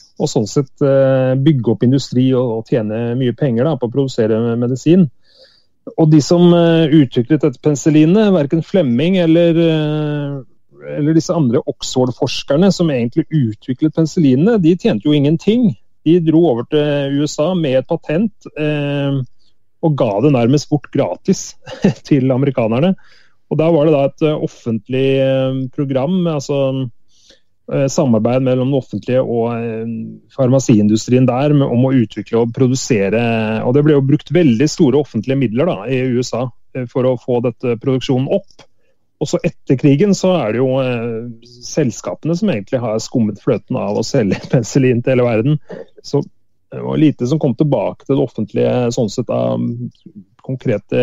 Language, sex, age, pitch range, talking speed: English, male, 30-49, 120-155 Hz, 145 wpm